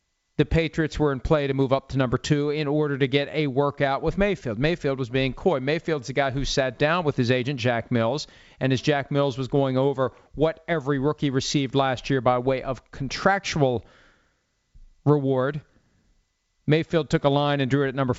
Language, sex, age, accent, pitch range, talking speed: English, male, 40-59, American, 130-160 Hz, 200 wpm